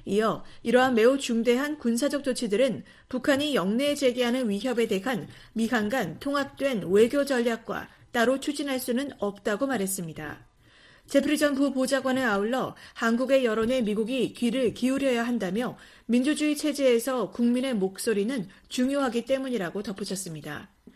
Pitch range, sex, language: 220-270 Hz, female, Korean